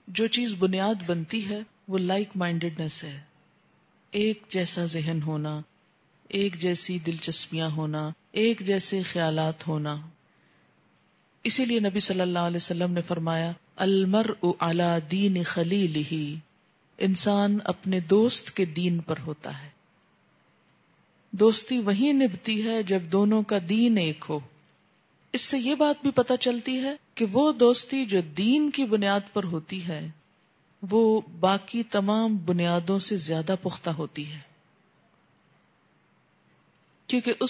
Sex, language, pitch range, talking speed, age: female, Urdu, 170-220 Hz, 130 wpm, 50-69